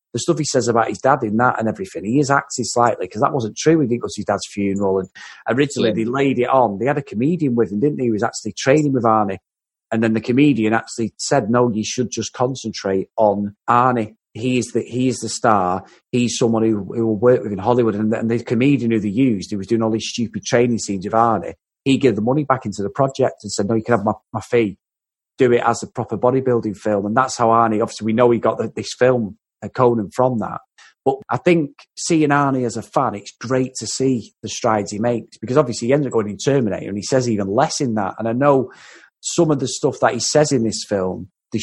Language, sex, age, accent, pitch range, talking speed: English, male, 30-49, British, 110-130 Hz, 255 wpm